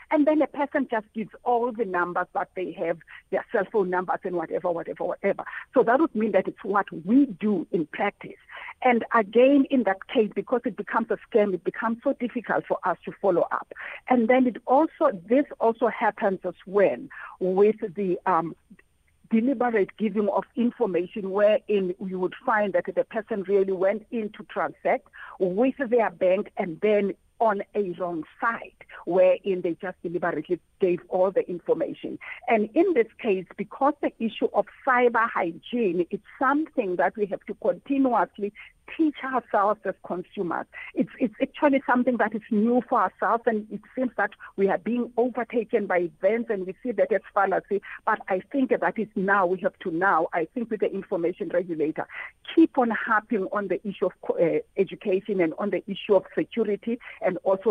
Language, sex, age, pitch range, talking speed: English, female, 50-69, 190-245 Hz, 180 wpm